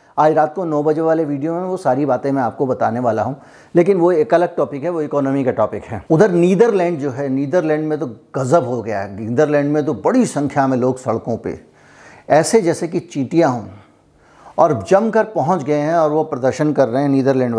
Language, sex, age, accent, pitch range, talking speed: Hindi, male, 50-69, native, 135-170 Hz, 220 wpm